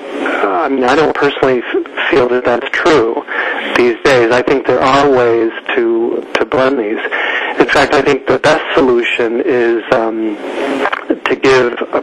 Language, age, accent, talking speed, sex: English, 40-59, American, 160 wpm, male